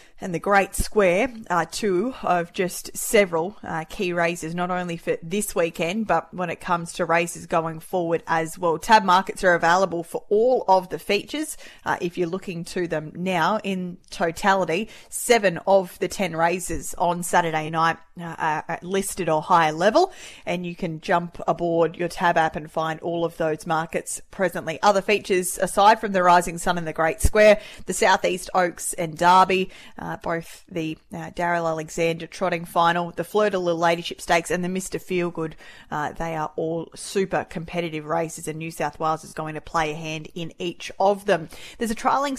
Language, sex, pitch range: English, female, 165-195 Hz